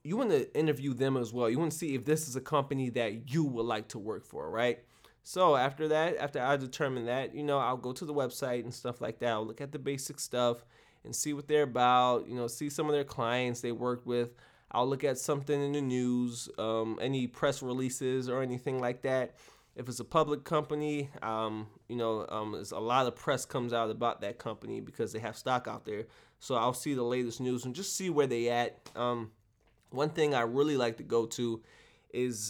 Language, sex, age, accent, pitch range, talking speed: Italian, male, 20-39, American, 120-140 Hz, 230 wpm